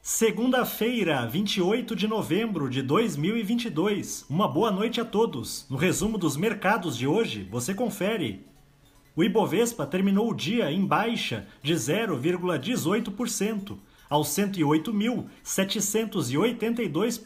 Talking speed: 105 wpm